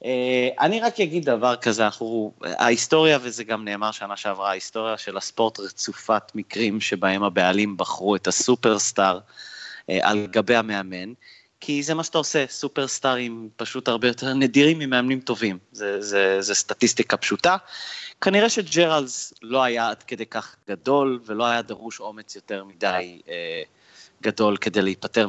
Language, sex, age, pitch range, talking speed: Hebrew, male, 30-49, 110-145 Hz, 145 wpm